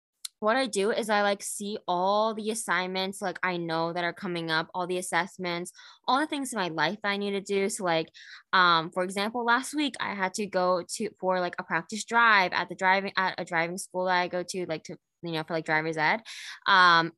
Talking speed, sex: 240 wpm, female